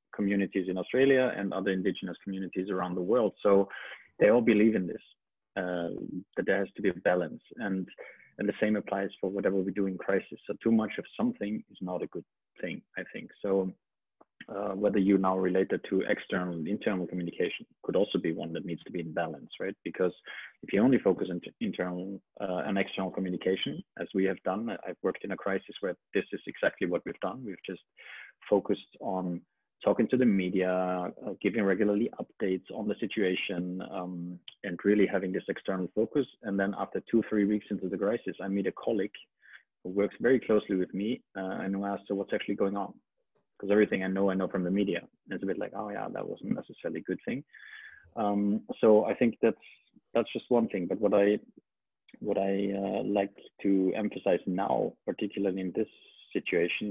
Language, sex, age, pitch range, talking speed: English, male, 30-49, 95-105 Hz, 200 wpm